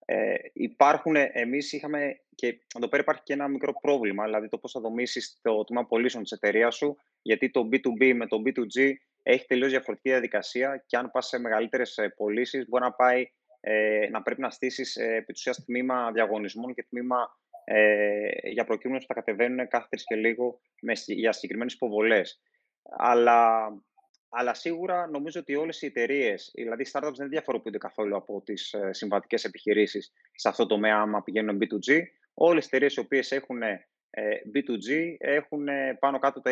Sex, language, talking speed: male, Greek, 170 wpm